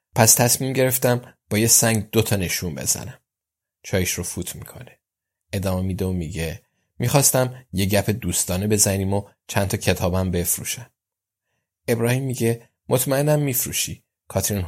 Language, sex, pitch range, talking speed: Persian, male, 90-115 Hz, 130 wpm